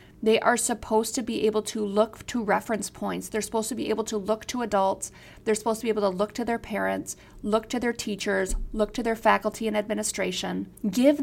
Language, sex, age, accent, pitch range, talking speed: English, female, 40-59, American, 205-230 Hz, 220 wpm